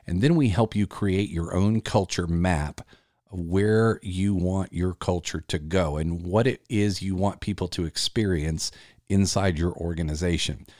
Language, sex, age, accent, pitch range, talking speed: English, male, 50-69, American, 85-105 Hz, 160 wpm